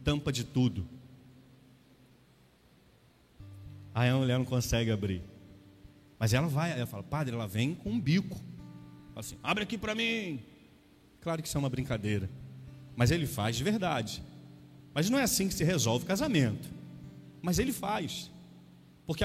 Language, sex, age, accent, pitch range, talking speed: Portuguese, male, 40-59, Brazilian, 120-180 Hz, 155 wpm